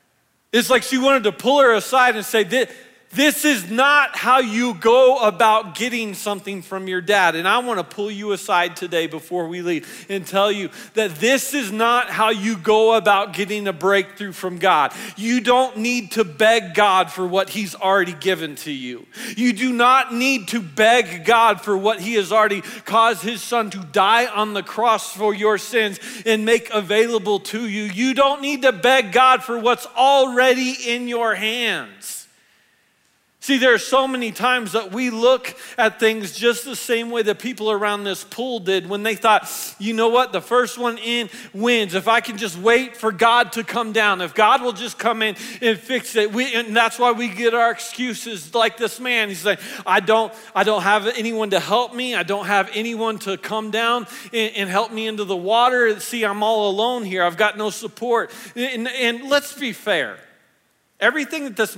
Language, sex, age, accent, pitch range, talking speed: English, male, 40-59, American, 205-240 Hz, 200 wpm